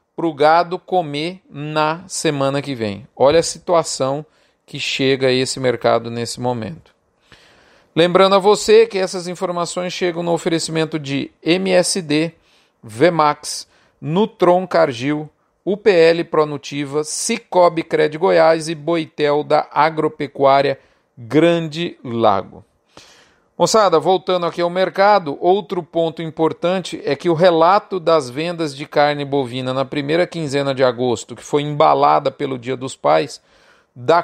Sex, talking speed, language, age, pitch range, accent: male, 130 wpm, Portuguese, 40-59, 145-175 Hz, Brazilian